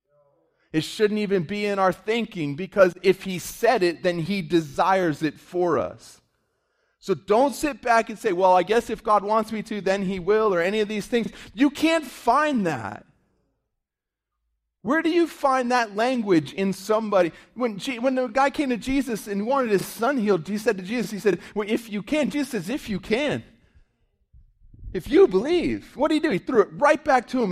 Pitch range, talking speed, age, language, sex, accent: 165-220 Hz, 205 wpm, 30-49, English, male, American